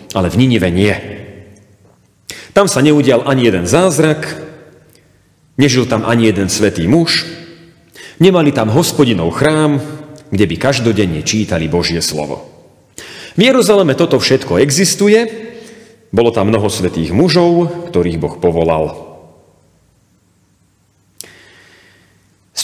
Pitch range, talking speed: 105-170 Hz, 105 wpm